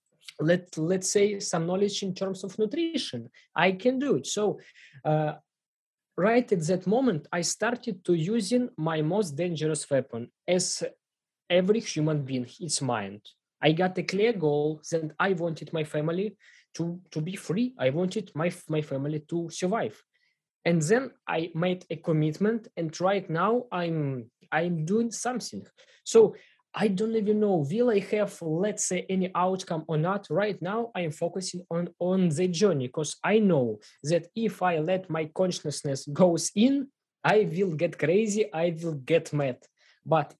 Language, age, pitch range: English, 20-39, 155-205 Hz